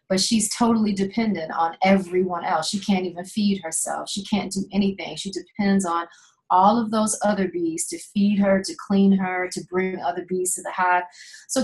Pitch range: 175-205 Hz